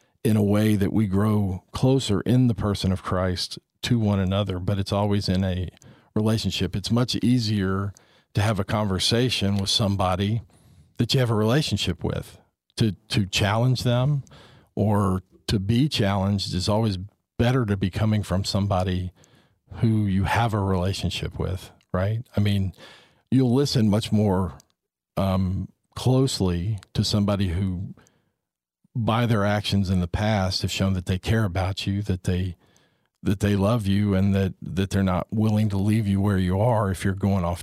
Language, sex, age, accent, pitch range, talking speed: English, male, 50-69, American, 95-115 Hz, 165 wpm